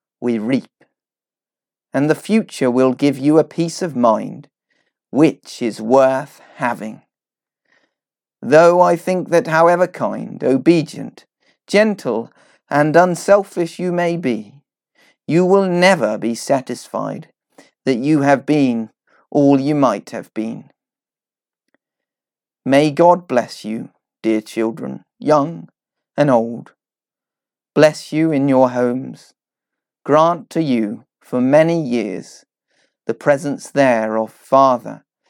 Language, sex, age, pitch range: English, male, 40-59, 125-165 Hz